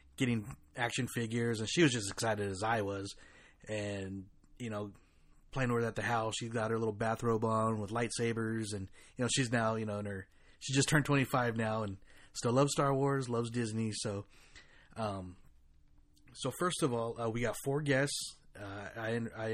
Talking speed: 195 wpm